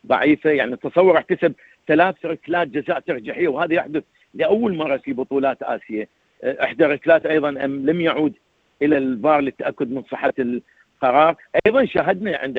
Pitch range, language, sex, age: 140-165 Hz, Arabic, male, 50-69